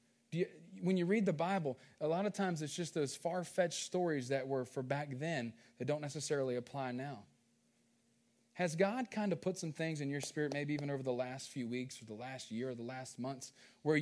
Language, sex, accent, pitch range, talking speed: English, male, American, 125-165 Hz, 215 wpm